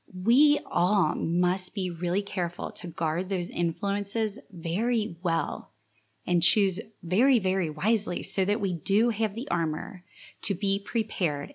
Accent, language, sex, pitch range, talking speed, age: American, English, female, 165-200 Hz, 140 wpm, 20-39